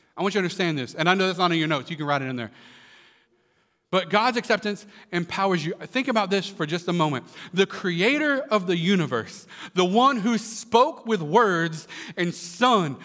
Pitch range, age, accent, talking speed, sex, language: 150-230 Hz, 40-59, American, 205 wpm, male, English